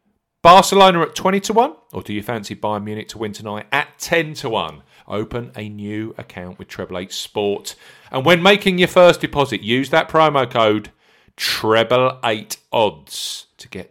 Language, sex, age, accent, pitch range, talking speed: English, male, 40-59, British, 100-155 Hz, 165 wpm